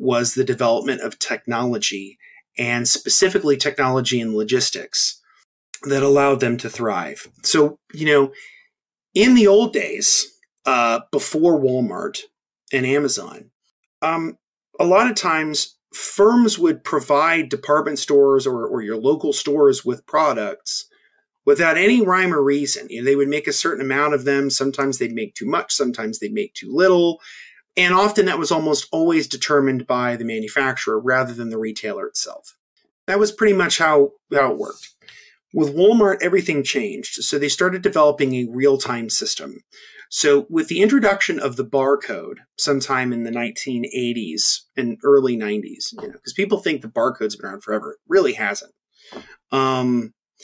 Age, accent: 30-49, American